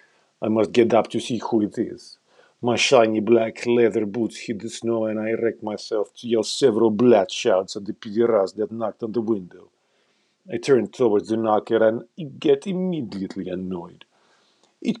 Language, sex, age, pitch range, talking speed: English, male, 50-69, 105-135 Hz, 175 wpm